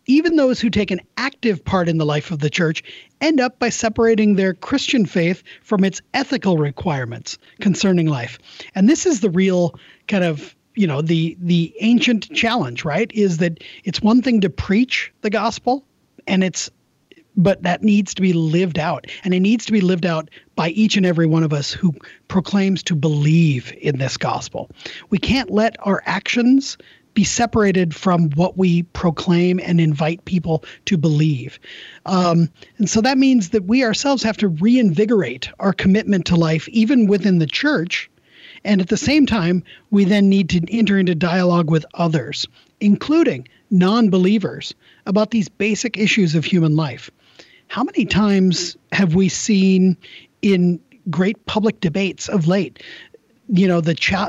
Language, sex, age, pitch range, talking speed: English, male, 30-49, 170-220 Hz, 170 wpm